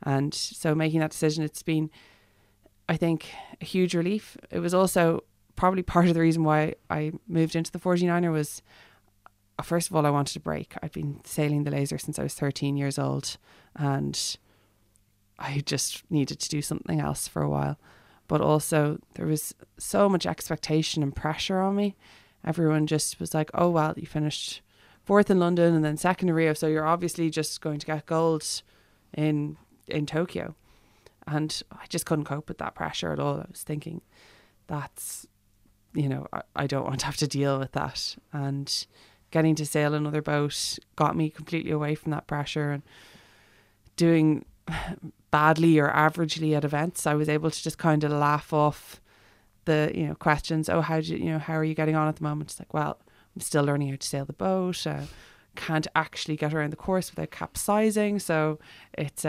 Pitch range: 140-160 Hz